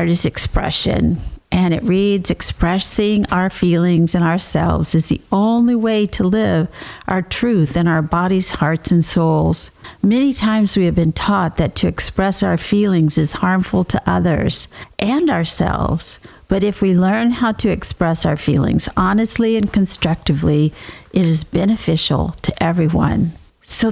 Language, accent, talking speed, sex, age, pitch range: English, American, 150 wpm, female, 50-69, 170-215 Hz